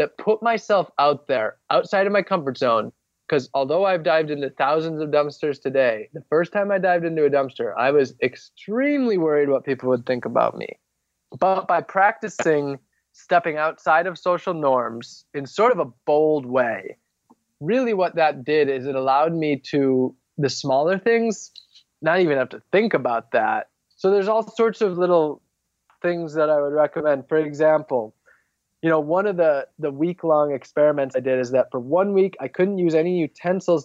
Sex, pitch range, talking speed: male, 140-190 Hz, 185 wpm